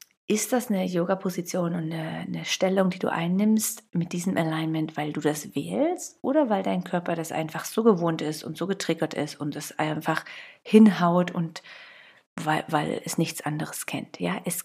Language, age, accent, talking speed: German, 40-59, German, 180 wpm